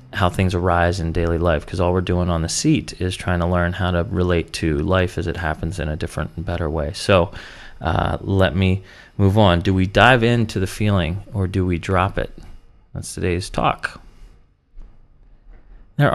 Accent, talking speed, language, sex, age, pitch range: American, 195 wpm, English, male, 30-49, 85-105 Hz